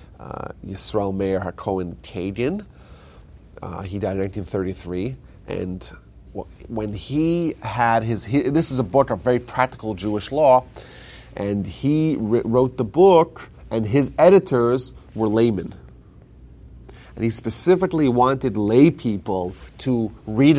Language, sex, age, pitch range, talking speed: English, male, 30-49, 105-130 Hz, 125 wpm